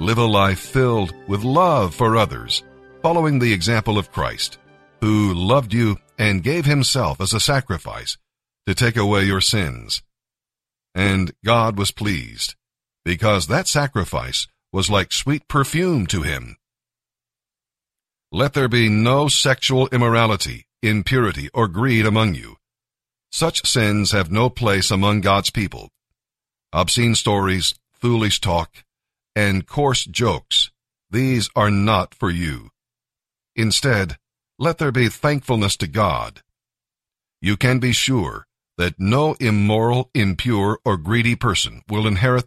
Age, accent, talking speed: 50-69, American, 130 wpm